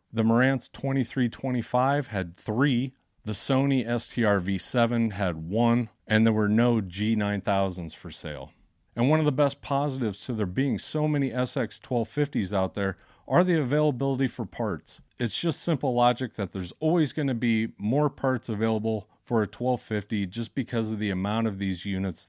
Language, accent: English, American